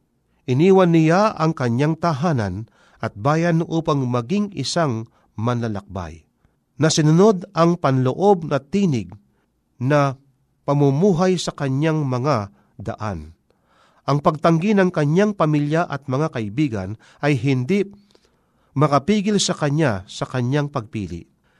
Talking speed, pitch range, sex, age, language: 105 wpm, 125-175 Hz, male, 50-69, Filipino